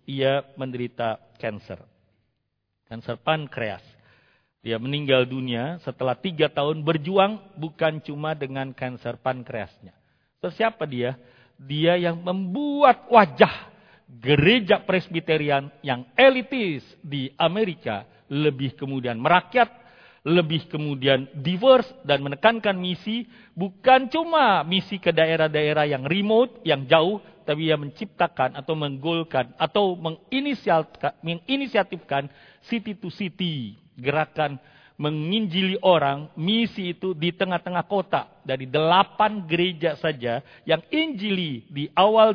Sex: male